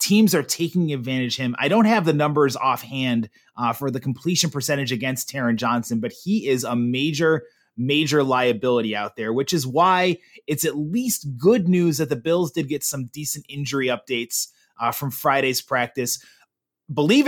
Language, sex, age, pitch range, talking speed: English, male, 30-49, 125-160 Hz, 175 wpm